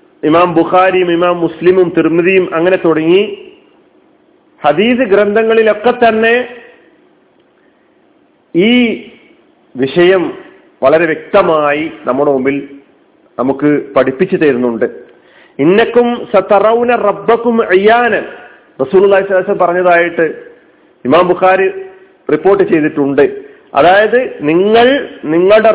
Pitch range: 170-260 Hz